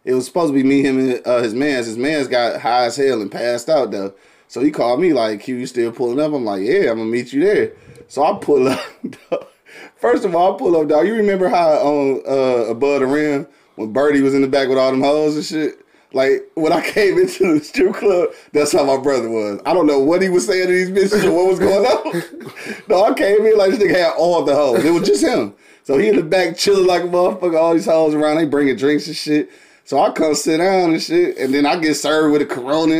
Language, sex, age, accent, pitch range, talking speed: English, male, 30-49, American, 140-190 Hz, 265 wpm